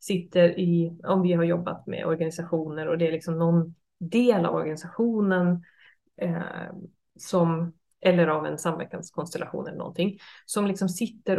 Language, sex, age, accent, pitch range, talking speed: Swedish, female, 30-49, native, 170-215 Hz, 140 wpm